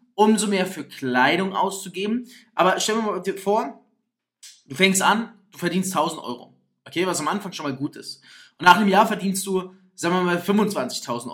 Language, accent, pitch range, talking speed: German, German, 170-215 Hz, 185 wpm